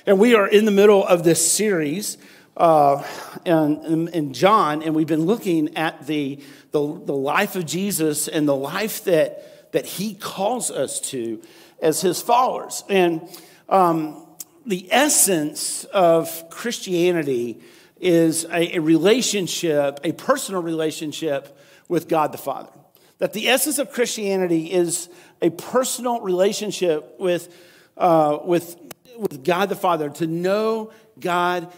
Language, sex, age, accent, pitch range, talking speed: English, male, 50-69, American, 165-210 Hz, 135 wpm